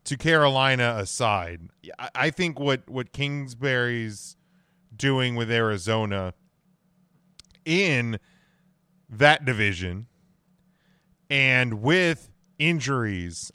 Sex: male